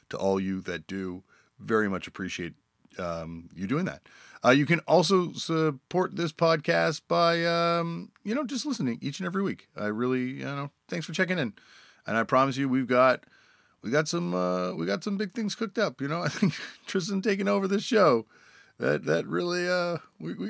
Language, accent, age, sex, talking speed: English, American, 30-49, male, 200 wpm